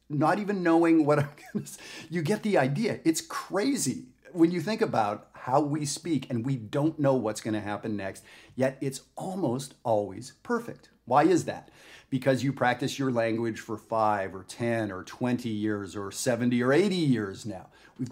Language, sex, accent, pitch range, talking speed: English, male, American, 115-155 Hz, 185 wpm